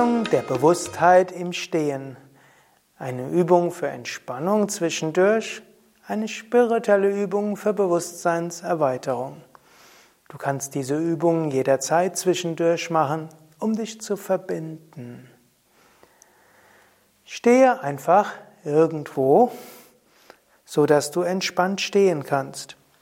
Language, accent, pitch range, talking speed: German, German, 140-185 Hz, 85 wpm